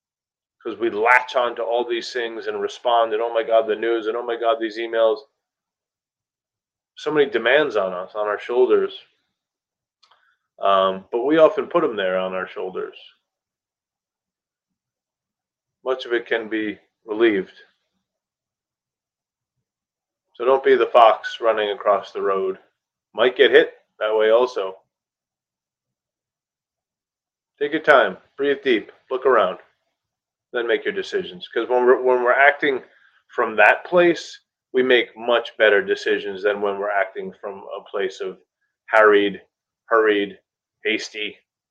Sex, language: male, English